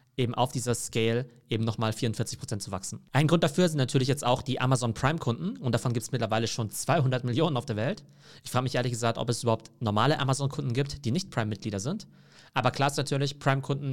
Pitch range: 115-140 Hz